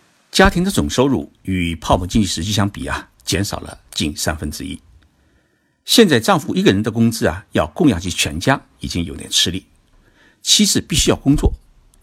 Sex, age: male, 60-79